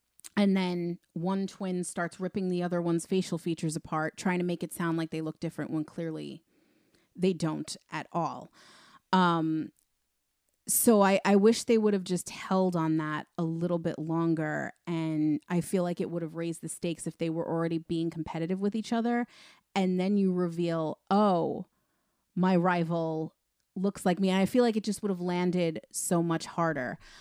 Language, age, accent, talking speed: English, 30-49, American, 185 wpm